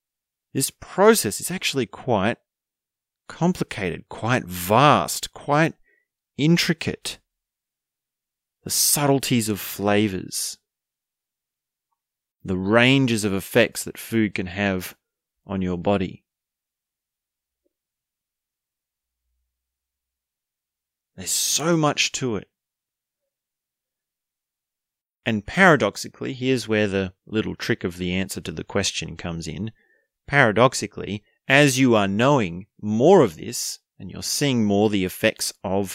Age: 30-49